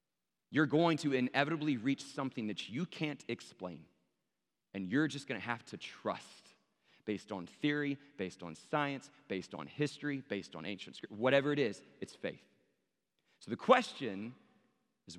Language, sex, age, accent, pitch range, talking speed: English, male, 40-59, American, 115-145 Hz, 160 wpm